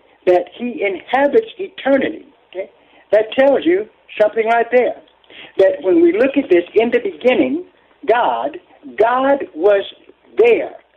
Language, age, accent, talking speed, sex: English, 60-79, American, 130 wpm, male